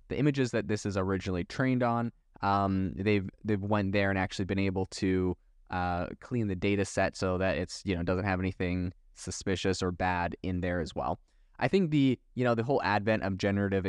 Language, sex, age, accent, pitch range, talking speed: English, male, 20-39, American, 95-115 Hz, 205 wpm